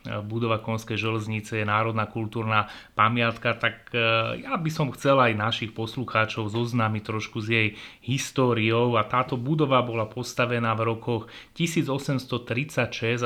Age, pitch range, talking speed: 30-49, 110-125 Hz, 125 wpm